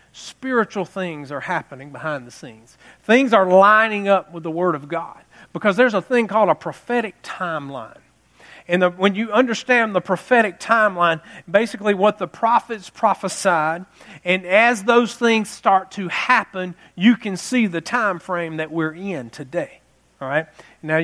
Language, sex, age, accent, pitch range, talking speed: English, male, 40-59, American, 185-245 Hz, 155 wpm